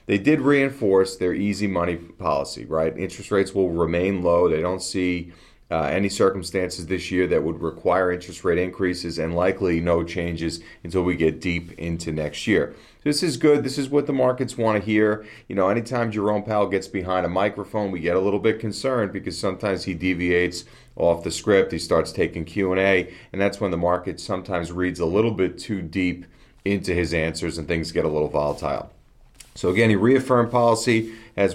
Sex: male